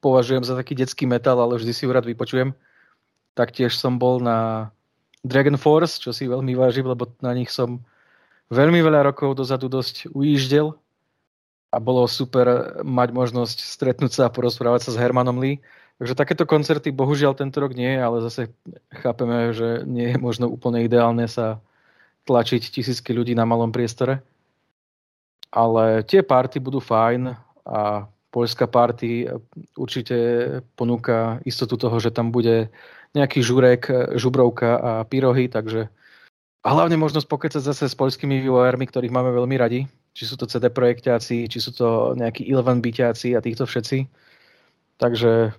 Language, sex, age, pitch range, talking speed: Slovak, male, 20-39, 120-135 Hz, 150 wpm